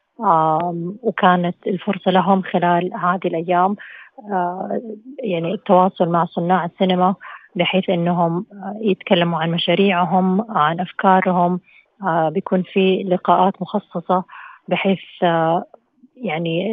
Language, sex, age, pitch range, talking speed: Arabic, female, 30-49, 170-195 Hz, 85 wpm